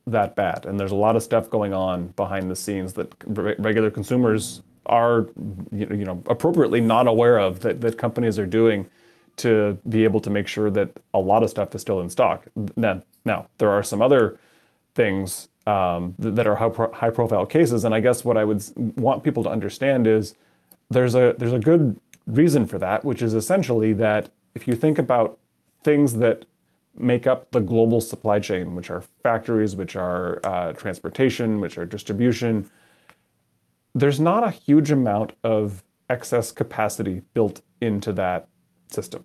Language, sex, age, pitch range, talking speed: English, male, 30-49, 105-125 Hz, 170 wpm